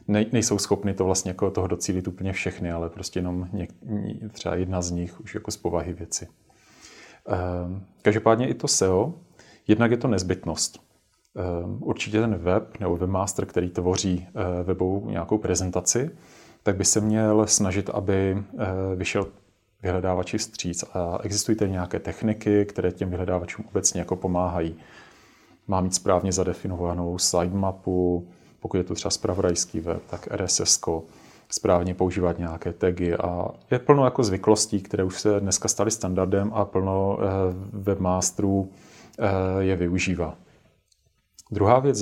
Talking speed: 135 wpm